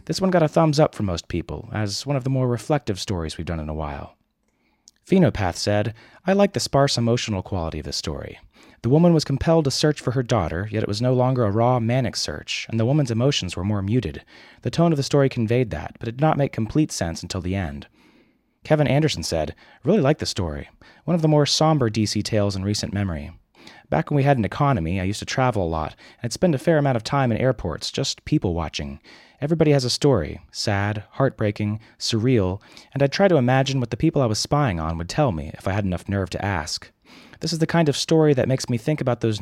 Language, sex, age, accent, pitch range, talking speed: English, male, 30-49, American, 95-135 Hz, 235 wpm